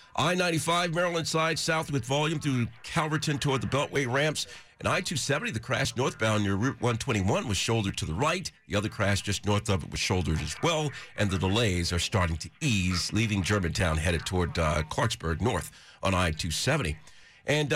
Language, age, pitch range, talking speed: English, 50-69, 95-135 Hz, 180 wpm